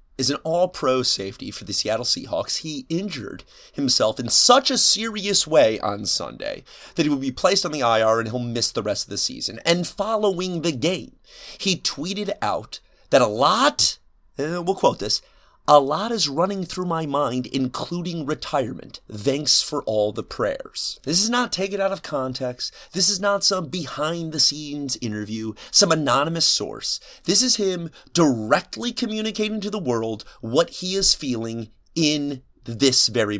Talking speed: 165 wpm